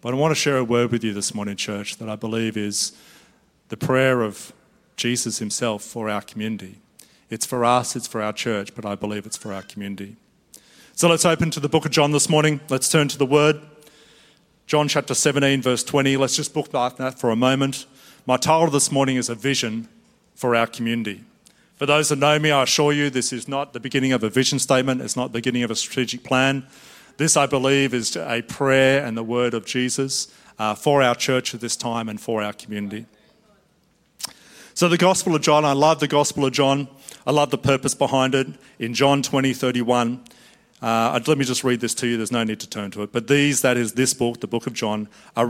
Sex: male